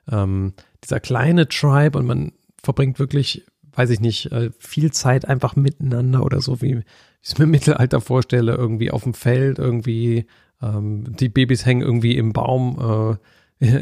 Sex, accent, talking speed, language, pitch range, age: male, German, 170 wpm, German, 115-140 Hz, 40-59